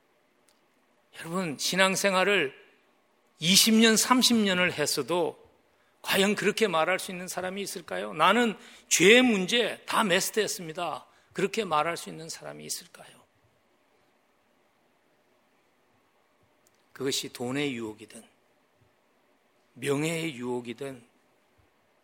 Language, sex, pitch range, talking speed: English, male, 125-190 Hz, 75 wpm